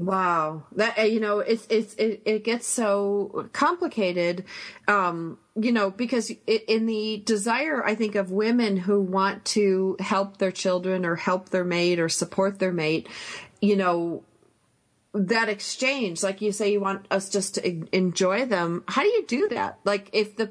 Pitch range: 185-220 Hz